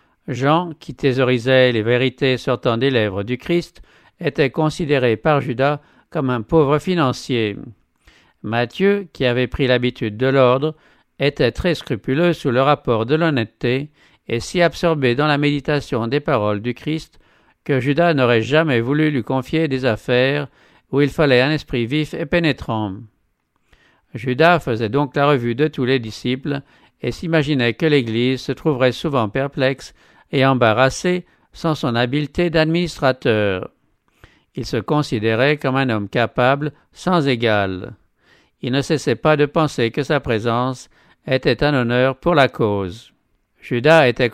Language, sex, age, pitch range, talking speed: English, male, 50-69, 120-150 Hz, 150 wpm